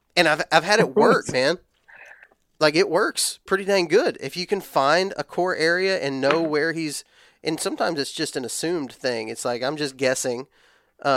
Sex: male